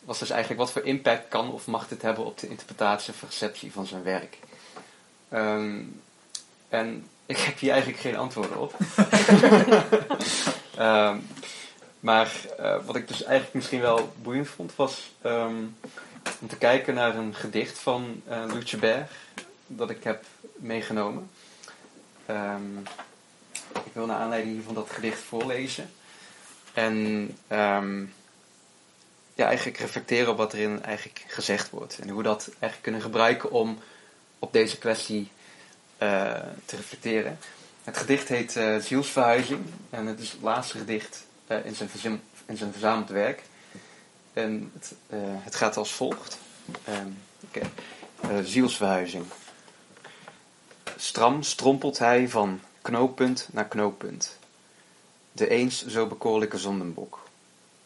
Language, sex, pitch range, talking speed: Dutch, male, 105-125 Hz, 130 wpm